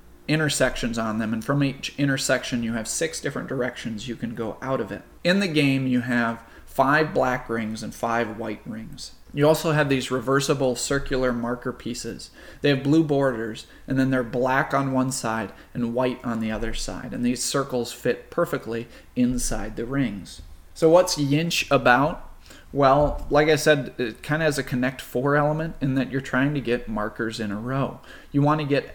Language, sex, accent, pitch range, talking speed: English, male, American, 115-145 Hz, 195 wpm